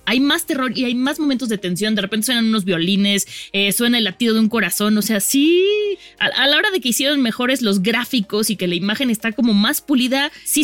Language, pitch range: Spanish, 200-255 Hz